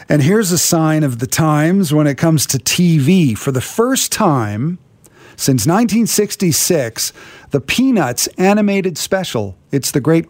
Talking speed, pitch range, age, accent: 145 wpm, 130-185 Hz, 50-69, American